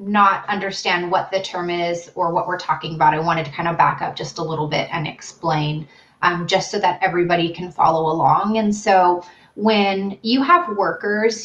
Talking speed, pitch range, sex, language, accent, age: 200 wpm, 170-200 Hz, female, English, American, 30-49